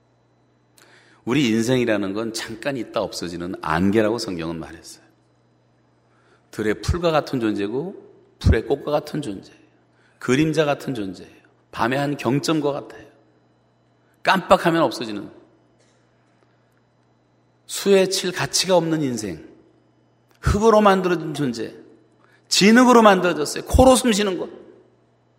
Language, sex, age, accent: Korean, male, 40-59, native